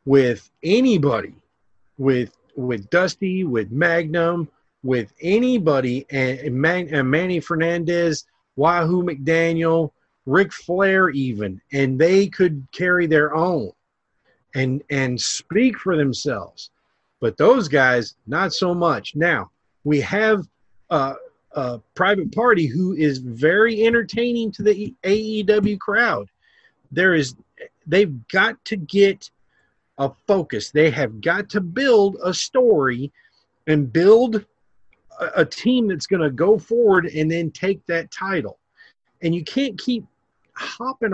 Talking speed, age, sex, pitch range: 125 wpm, 40-59, male, 145-200 Hz